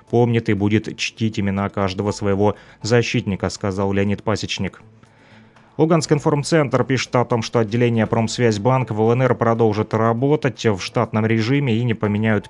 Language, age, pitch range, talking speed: Russian, 30-49, 105-120 Hz, 140 wpm